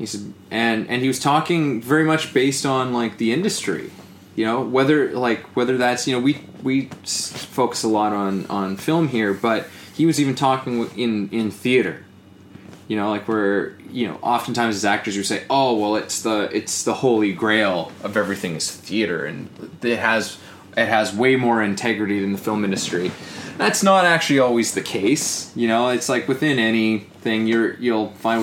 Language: English